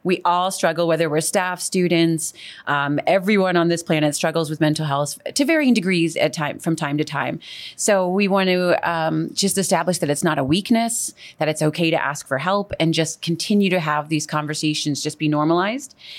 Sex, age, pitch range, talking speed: female, 30-49, 155-190 Hz, 200 wpm